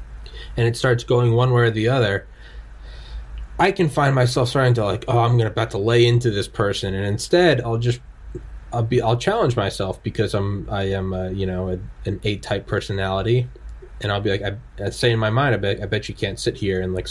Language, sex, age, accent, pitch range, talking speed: English, male, 20-39, American, 100-135 Hz, 230 wpm